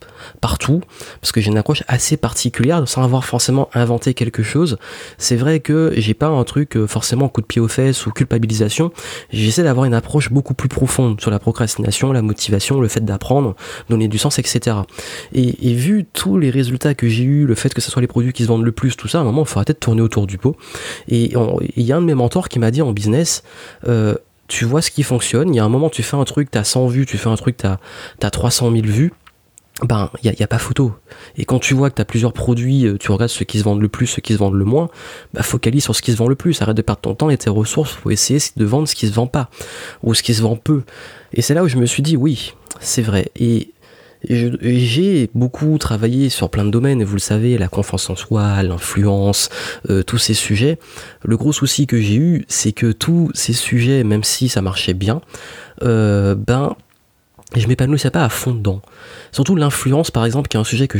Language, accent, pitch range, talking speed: French, French, 110-135 Hz, 250 wpm